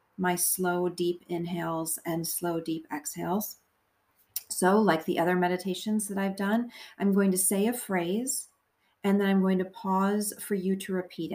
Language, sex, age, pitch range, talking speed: English, female, 40-59, 180-215 Hz, 170 wpm